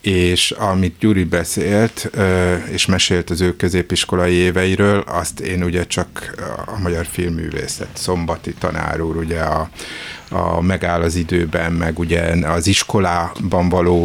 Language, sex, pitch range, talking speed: Hungarian, male, 85-95 Hz, 130 wpm